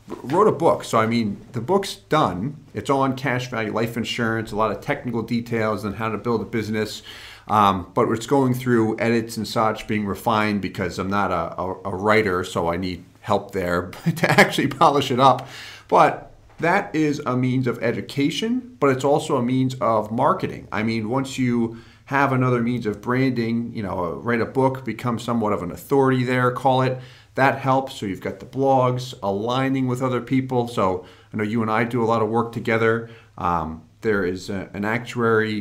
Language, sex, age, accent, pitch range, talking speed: English, male, 40-59, American, 105-130 Hz, 195 wpm